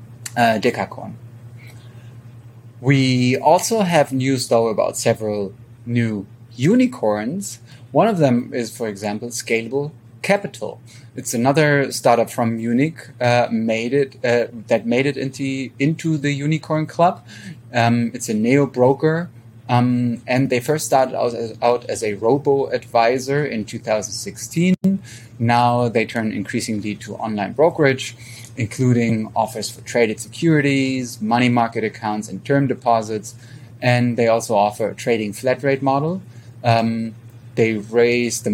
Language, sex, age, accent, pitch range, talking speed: English, male, 30-49, German, 110-130 Hz, 125 wpm